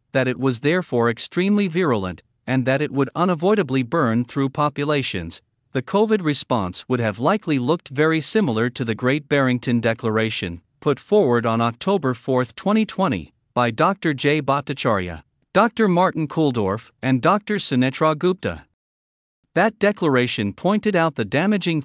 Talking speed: 135 wpm